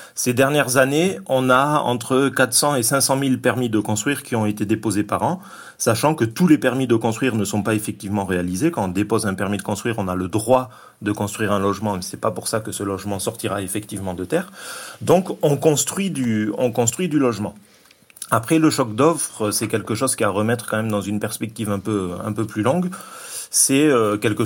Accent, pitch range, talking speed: French, 105-130 Hz, 220 wpm